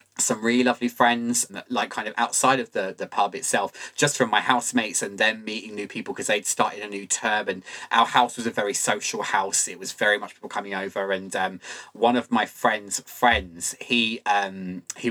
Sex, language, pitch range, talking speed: male, English, 115-145 Hz, 210 wpm